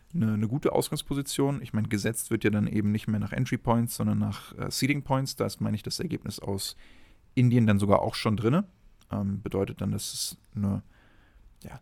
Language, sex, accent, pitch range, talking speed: German, male, German, 105-120 Hz, 200 wpm